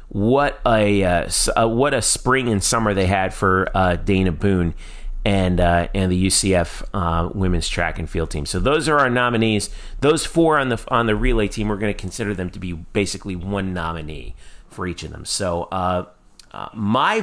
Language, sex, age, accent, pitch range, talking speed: English, male, 30-49, American, 90-120 Hz, 200 wpm